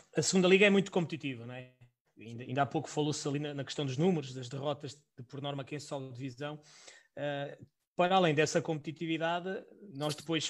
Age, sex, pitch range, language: 20-39, male, 145-175 Hz, Portuguese